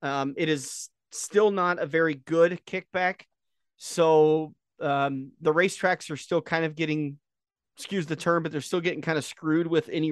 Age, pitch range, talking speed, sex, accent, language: 30-49, 140-165 Hz, 180 wpm, male, American, English